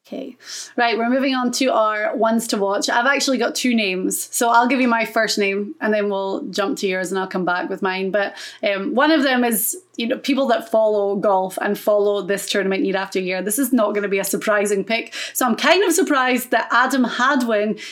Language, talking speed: English, 230 wpm